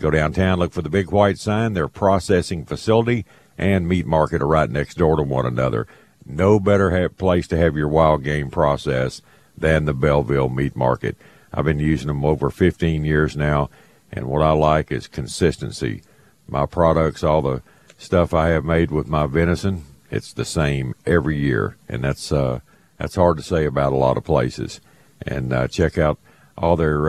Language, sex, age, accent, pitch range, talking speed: English, male, 50-69, American, 75-85 Hz, 185 wpm